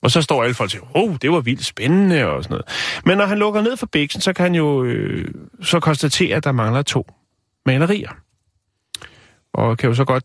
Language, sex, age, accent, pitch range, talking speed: Danish, male, 30-49, native, 110-145 Hz, 235 wpm